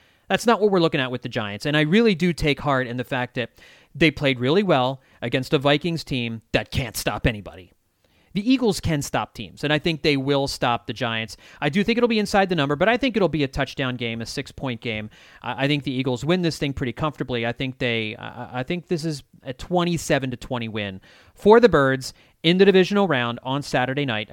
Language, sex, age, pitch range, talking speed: English, male, 30-49, 125-170 Hz, 230 wpm